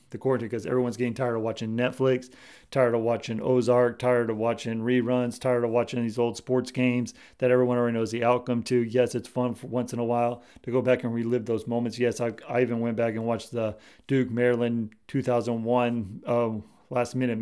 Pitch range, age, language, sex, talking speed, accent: 115-125 Hz, 40-59, English, male, 210 wpm, American